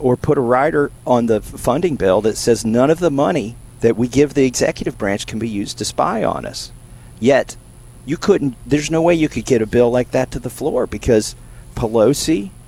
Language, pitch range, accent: English, 110-145 Hz, American